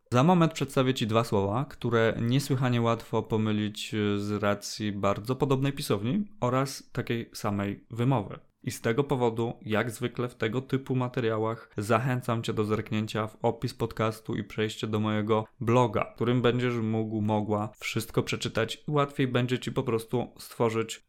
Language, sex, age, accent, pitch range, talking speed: Polish, male, 20-39, native, 110-135 Hz, 155 wpm